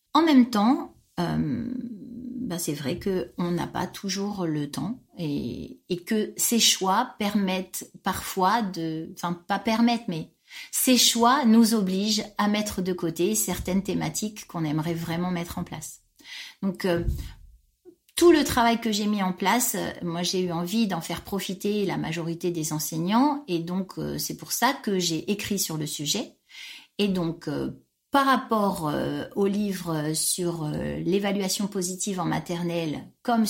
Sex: female